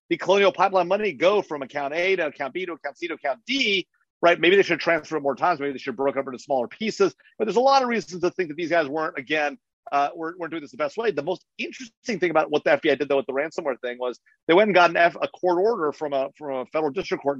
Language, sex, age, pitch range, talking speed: English, male, 40-59, 140-185 Hz, 295 wpm